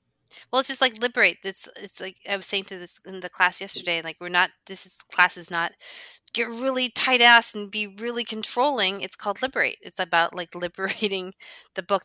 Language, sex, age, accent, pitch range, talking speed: English, female, 30-49, American, 160-190 Hz, 205 wpm